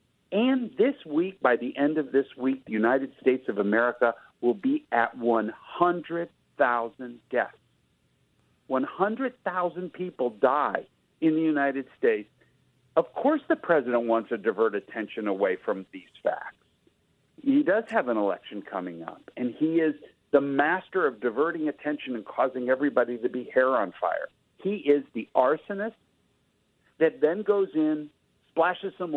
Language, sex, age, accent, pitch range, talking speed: English, male, 50-69, American, 125-195 Hz, 145 wpm